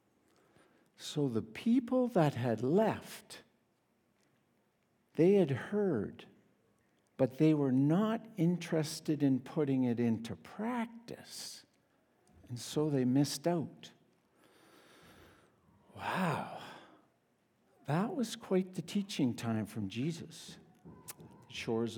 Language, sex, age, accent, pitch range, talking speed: English, male, 60-79, American, 130-190 Hz, 95 wpm